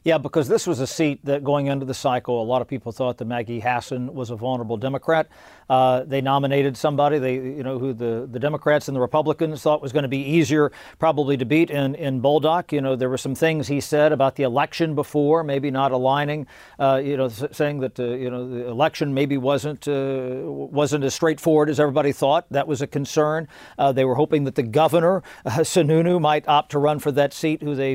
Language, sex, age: English, male, 50-69